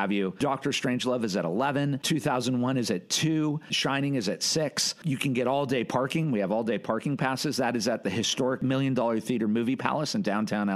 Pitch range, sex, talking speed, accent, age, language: 120-150 Hz, male, 210 wpm, American, 40-59, English